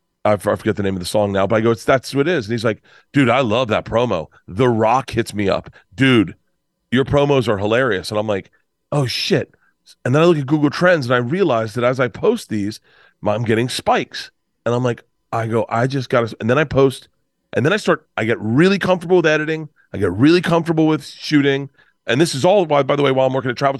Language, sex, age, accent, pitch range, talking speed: English, male, 30-49, American, 110-145 Hz, 250 wpm